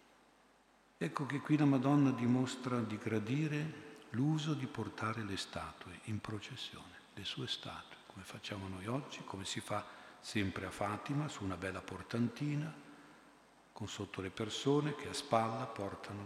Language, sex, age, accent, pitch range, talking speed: Italian, male, 50-69, native, 100-130 Hz, 150 wpm